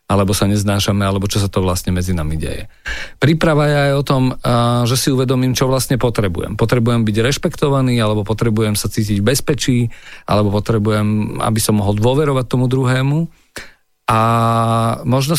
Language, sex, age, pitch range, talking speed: Slovak, male, 40-59, 100-130 Hz, 160 wpm